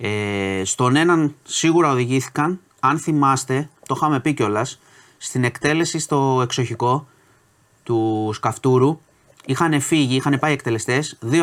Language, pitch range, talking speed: Greek, 105-140 Hz, 115 wpm